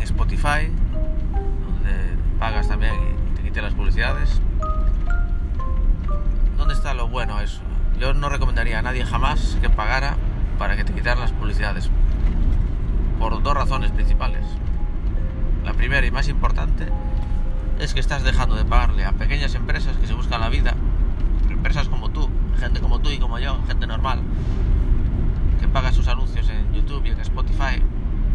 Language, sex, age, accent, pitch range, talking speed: Spanish, male, 30-49, Spanish, 75-100 Hz, 150 wpm